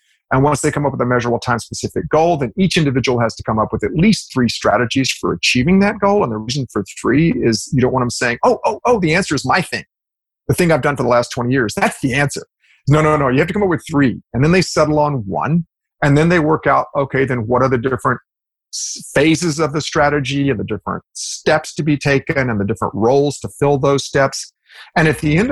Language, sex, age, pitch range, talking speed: English, male, 40-59, 115-155 Hz, 250 wpm